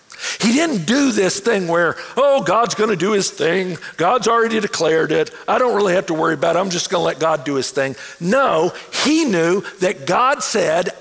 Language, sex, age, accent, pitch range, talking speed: English, male, 50-69, American, 180-250 Hz, 220 wpm